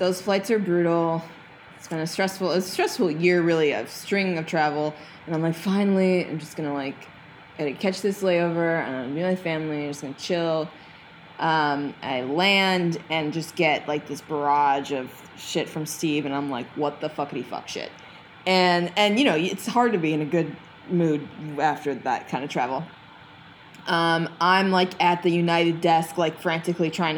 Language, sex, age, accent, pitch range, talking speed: English, female, 20-39, American, 155-185 Hz, 195 wpm